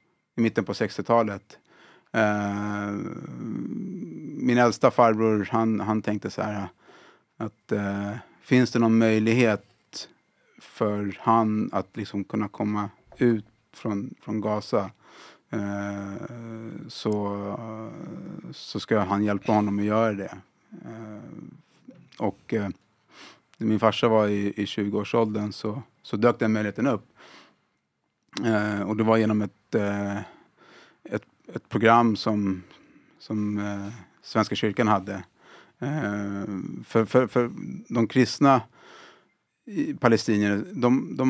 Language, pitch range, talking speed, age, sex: Swedish, 100-115 Hz, 105 wpm, 30-49, male